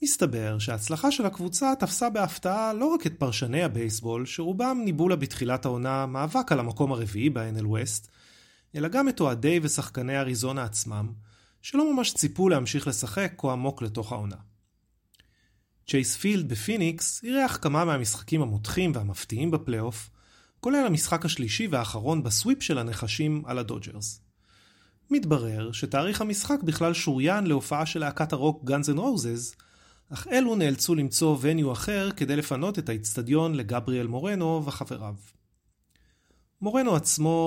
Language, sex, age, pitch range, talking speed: Hebrew, male, 30-49, 115-165 Hz, 130 wpm